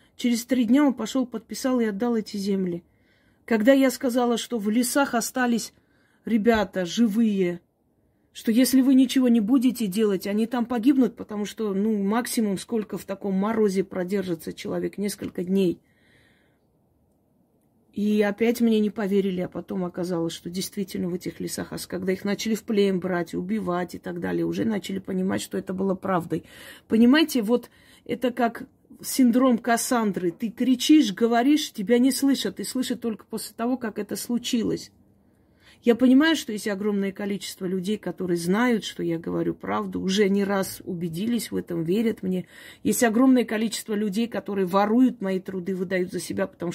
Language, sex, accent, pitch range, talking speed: Russian, female, native, 185-240 Hz, 160 wpm